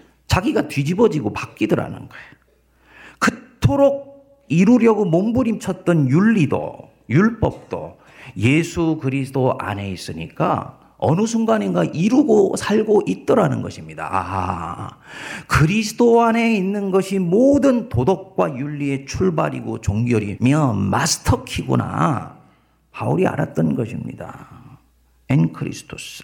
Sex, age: male, 50-69